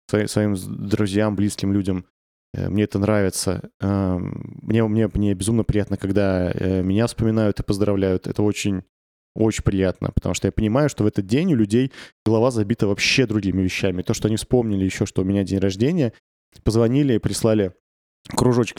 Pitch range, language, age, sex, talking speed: 100-120 Hz, Russian, 20-39, male, 160 wpm